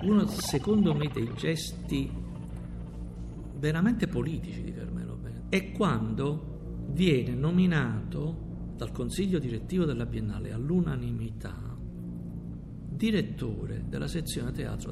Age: 50-69